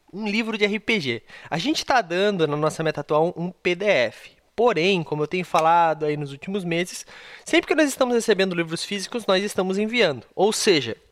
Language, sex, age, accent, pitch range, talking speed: Portuguese, male, 20-39, Brazilian, 170-235 Hz, 190 wpm